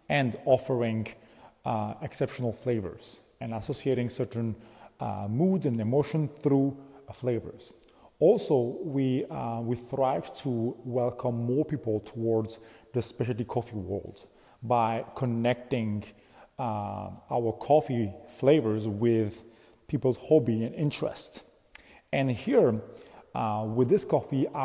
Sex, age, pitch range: male, 30-49, 115-135 Hz